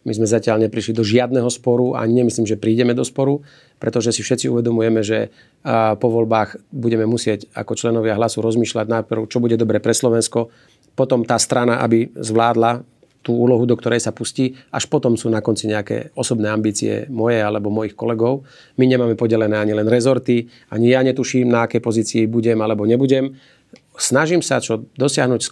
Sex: male